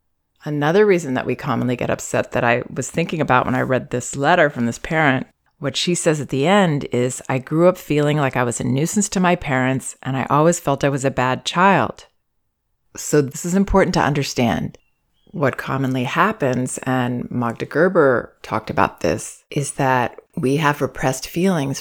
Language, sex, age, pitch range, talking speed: English, female, 30-49, 125-150 Hz, 190 wpm